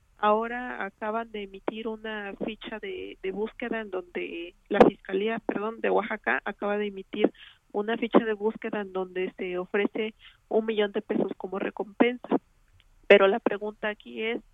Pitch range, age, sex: 200-230 Hz, 40-59, female